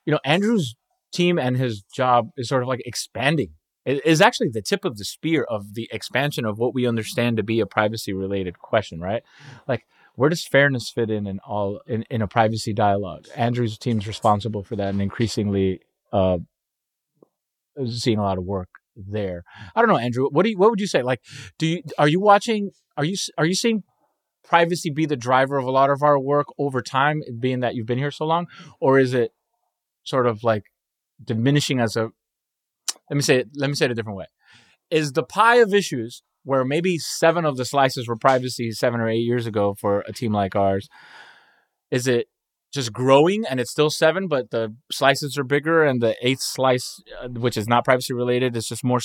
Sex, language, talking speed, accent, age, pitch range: male, English, 210 wpm, American, 30-49, 110-145 Hz